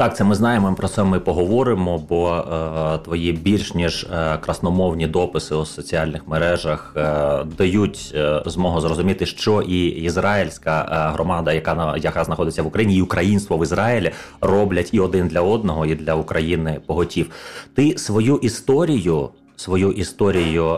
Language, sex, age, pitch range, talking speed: Ukrainian, male, 30-49, 80-95 Hz, 150 wpm